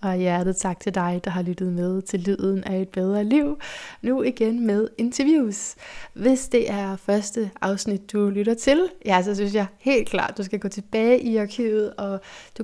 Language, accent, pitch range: Danish, native, 195-230 Hz